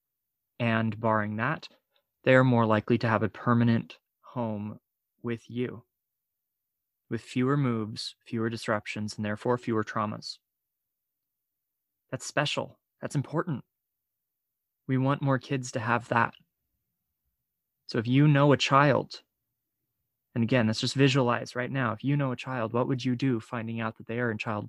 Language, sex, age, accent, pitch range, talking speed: English, male, 20-39, American, 110-130 Hz, 150 wpm